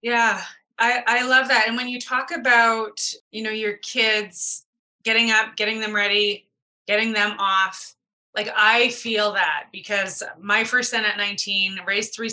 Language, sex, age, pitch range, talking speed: English, female, 20-39, 200-245 Hz, 165 wpm